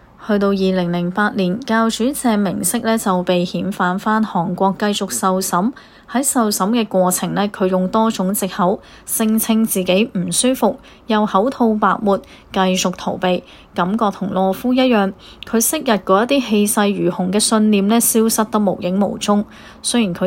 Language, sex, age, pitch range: Chinese, female, 20-39, 185-225 Hz